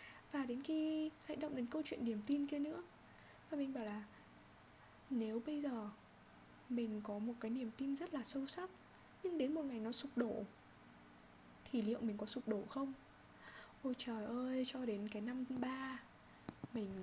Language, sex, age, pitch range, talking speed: Vietnamese, female, 10-29, 215-275 Hz, 185 wpm